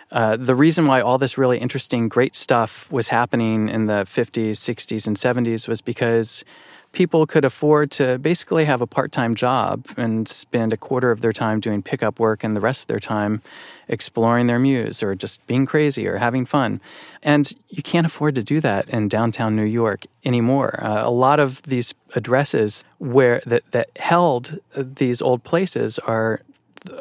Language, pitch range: English, 115-140 Hz